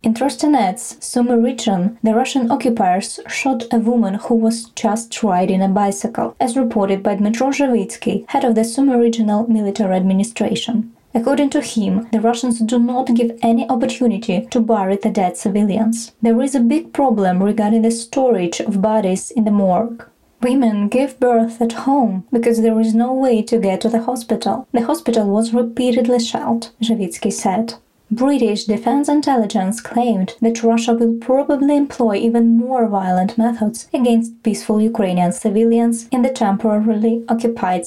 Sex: female